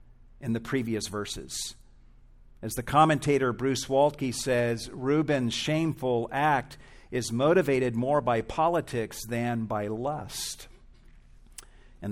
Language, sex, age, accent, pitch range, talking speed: English, male, 50-69, American, 115-140 Hz, 110 wpm